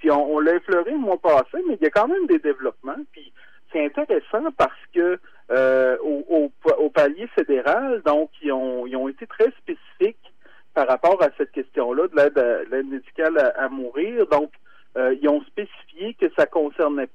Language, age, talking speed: French, 40-59, 195 wpm